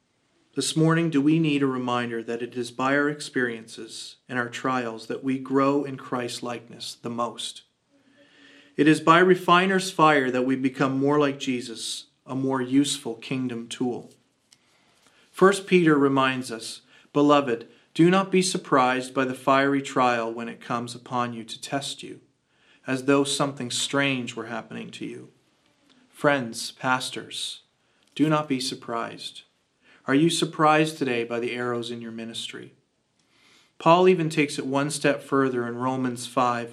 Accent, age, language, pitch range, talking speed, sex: American, 40-59, English, 120-150 Hz, 155 wpm, male